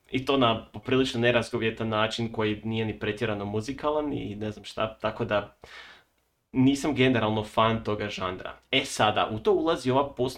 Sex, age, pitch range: male, 30-49, 105-125 Hz